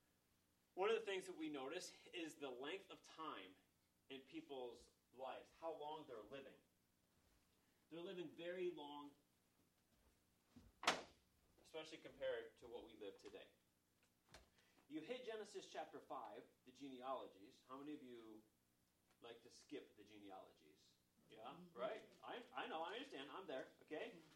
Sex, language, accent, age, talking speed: male, English, American, 30-49, 140 wpm